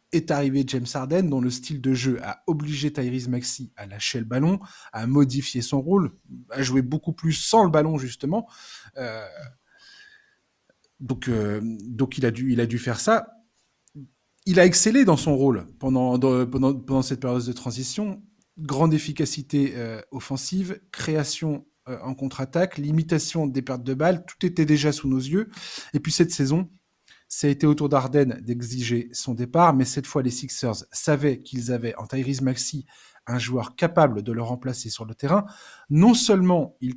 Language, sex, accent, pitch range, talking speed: French, male, French, 125-165 Hz, 180 wpm